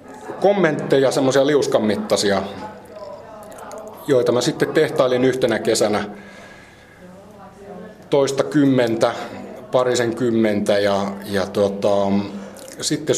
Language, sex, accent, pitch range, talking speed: Finnish, male, native, 100-135 Hz, 75 wpm